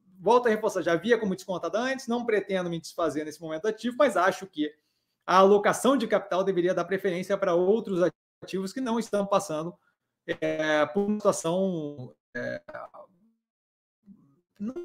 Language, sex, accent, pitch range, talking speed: Portuguese, male, Brazilian, 165-205 Hz, 145 wpm